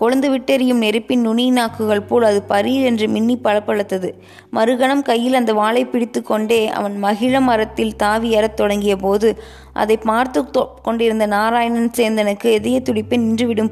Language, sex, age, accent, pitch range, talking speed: Tamil, female, 20-39, native, 210-240 Hz, 115 wpm